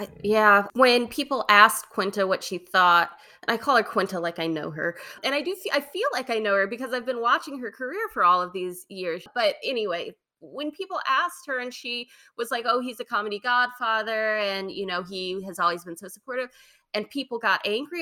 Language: English